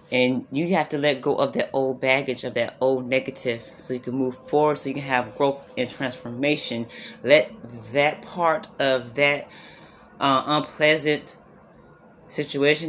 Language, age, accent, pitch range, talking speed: English, 30-49, American, 135-175 Hz, 160 wpm